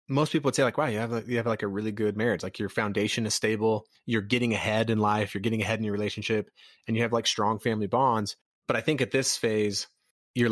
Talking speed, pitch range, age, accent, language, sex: 260 wpm, 105-125 Hz, 30-49, American, English, male